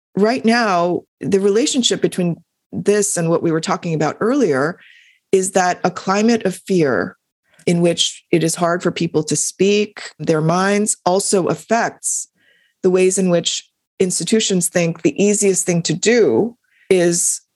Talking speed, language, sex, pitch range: 150 wpm, English, female, 165-210 Hz